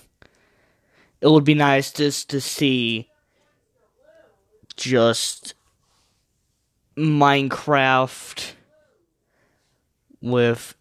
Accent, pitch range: American, 110-135 Hz